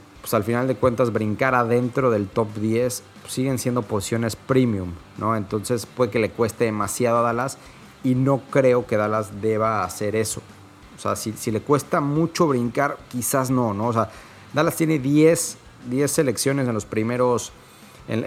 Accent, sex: Mexican, male